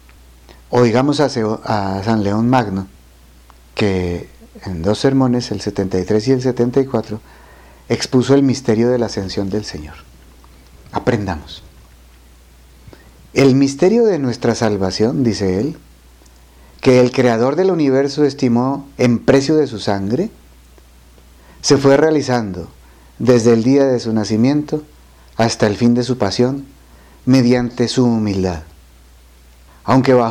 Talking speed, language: 115 wpm, Spanish